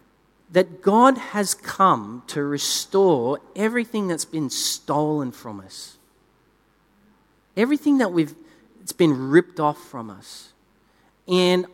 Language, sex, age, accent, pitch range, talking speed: English, male, 40-59, Australian, 125-180 Hz, 110 wpm